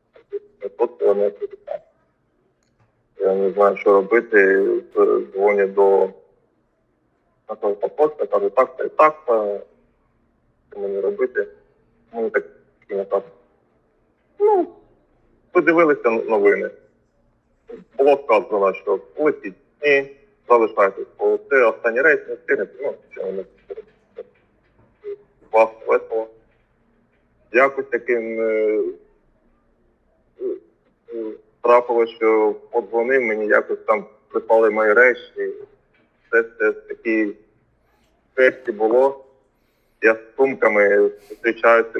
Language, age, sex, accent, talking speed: Ukrainian, 40-59, male, native, 85 wpm